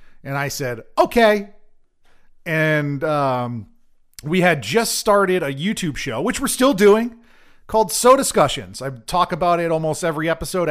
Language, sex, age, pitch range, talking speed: English, male, 40-59, 135-180 Hz, 150 wpm